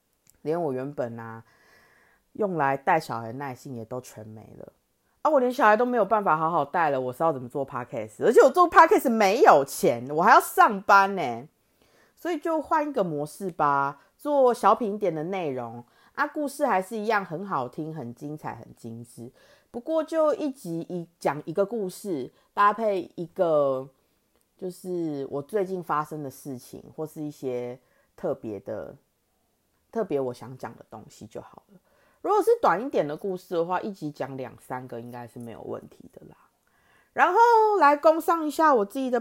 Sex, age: female, 30-49